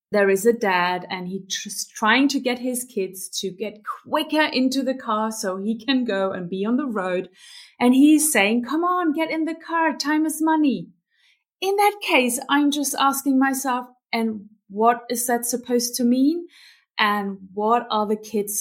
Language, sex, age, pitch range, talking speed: English, female, 30-49, 205-305 Hz, 185 wpm